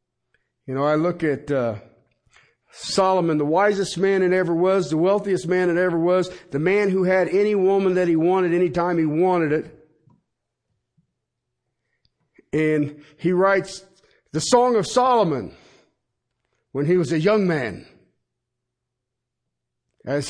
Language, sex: English, male